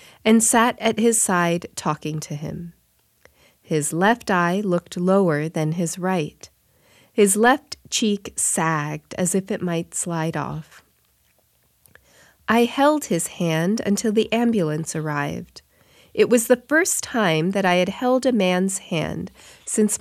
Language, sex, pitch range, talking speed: English, female, 165-220 Hz, 140 wpm